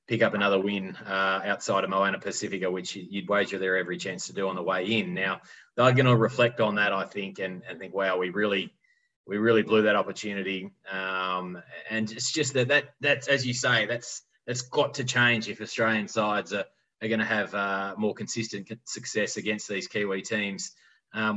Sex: male